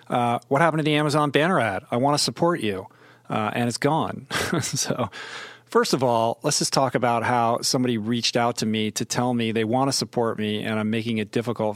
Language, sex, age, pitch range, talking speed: English, male, 40-59, 110-130 Hz, 225 wpm